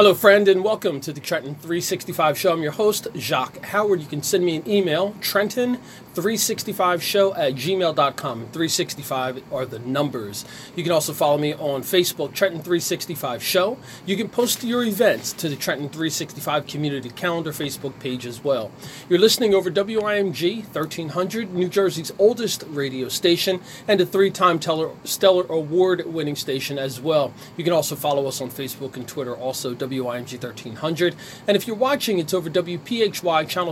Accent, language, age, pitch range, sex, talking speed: American, English, 30-49, 145-190 Hz, male, 165 wpm